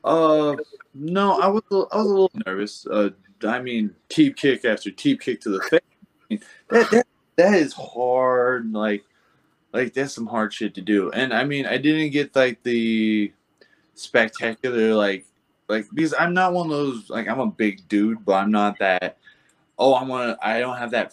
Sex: male